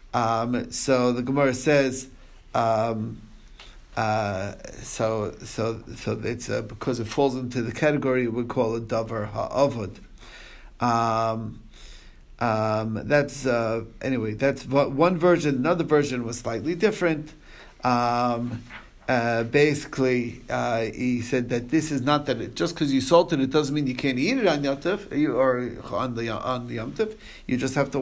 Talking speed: 155 wpm